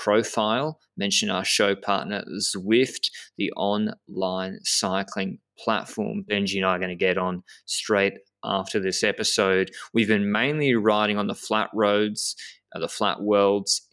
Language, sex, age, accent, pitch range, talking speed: English, male, 20-39, Australian, 95-110 Hz, 140 wpm